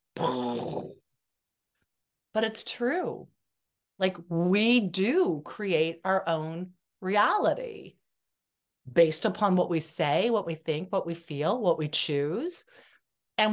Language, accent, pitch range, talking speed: English, American, 165-215 Hz, 110 wpm